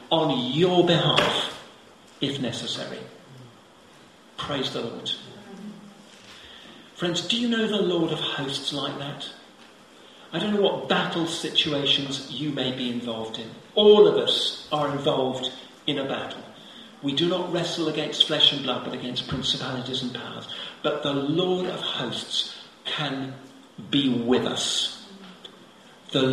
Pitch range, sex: 130-180 Hz, male